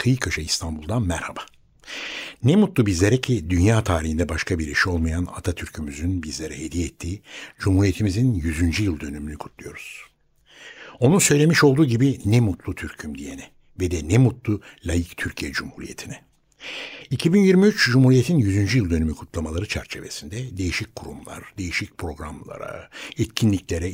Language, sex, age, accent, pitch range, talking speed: Turkish, male, 60-79, native, 85-125 Hz, 125 wpm